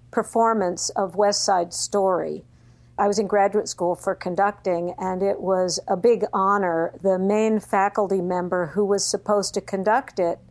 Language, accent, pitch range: English, American, 165-210 Hz